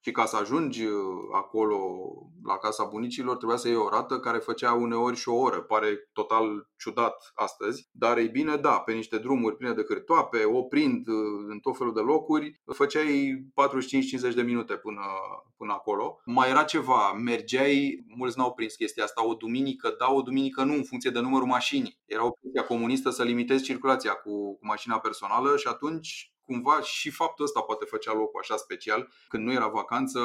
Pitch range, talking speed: 115-150 Hz, 185 wpm